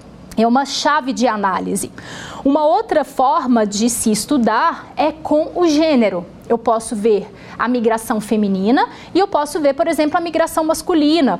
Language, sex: Portuguese, female